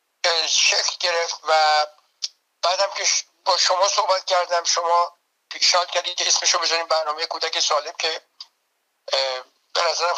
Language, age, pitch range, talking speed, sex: Persian, 60-79, 150-175 Hz, 125 wpm, male